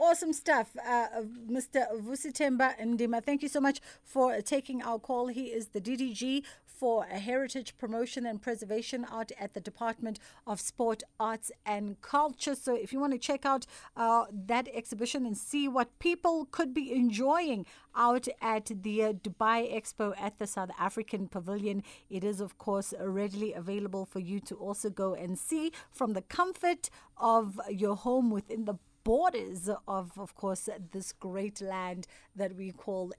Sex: female